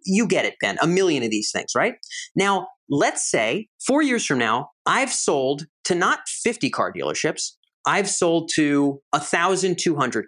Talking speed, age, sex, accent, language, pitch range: 165 wpm, 30-49, male, American, English, 135-200 Hz